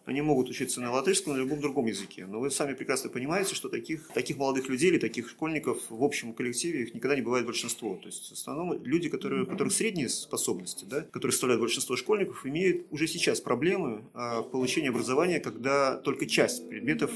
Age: 30-49